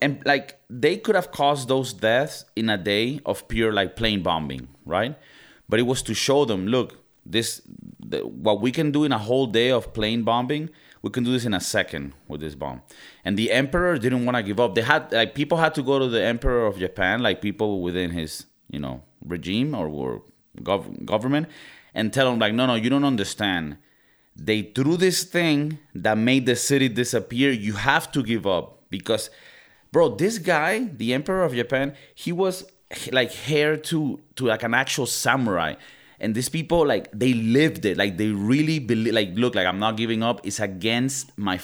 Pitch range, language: 105-140 Hz, English